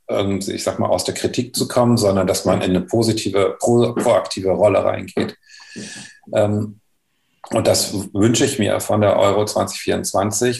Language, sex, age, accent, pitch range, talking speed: German, male, 40-59, German, 95-110 Hz, 145 wpm